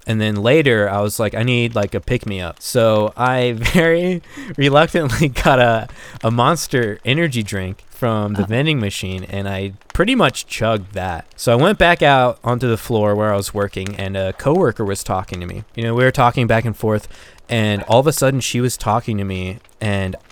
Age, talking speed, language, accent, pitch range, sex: 20-39, 210 wpm, English, American, 95-120 Hz, male